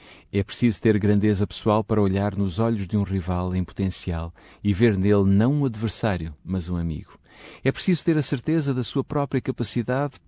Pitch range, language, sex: 95-135 Hz, Portuguese, male